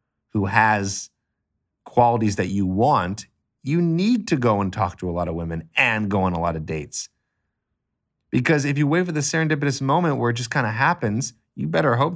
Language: English